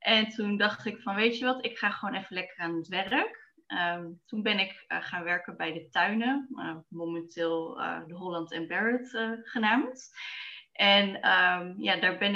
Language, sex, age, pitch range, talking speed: Dutch, female, 20-39, 180-245 Hz, 175 wpm